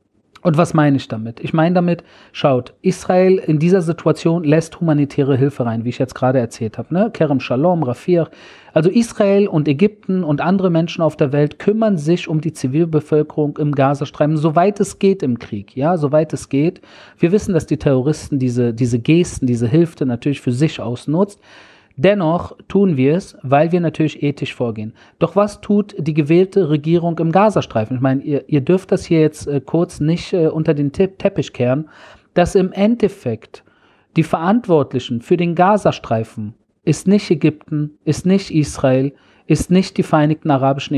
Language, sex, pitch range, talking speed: German, male, 140-185 Hz, 175 wpm